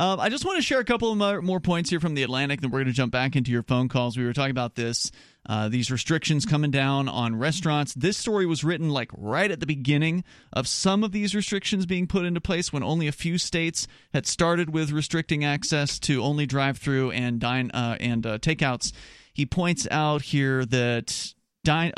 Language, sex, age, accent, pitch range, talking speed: English, male, 30-49, American, 130-175 Hz, 220 wpm